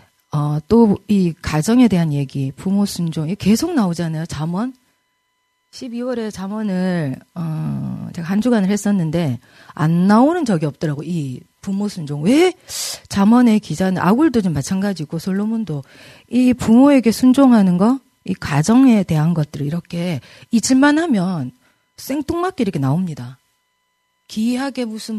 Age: 40-59